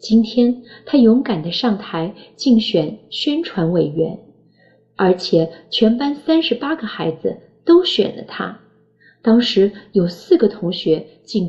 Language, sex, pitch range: Chinese, female, 175-245 Hz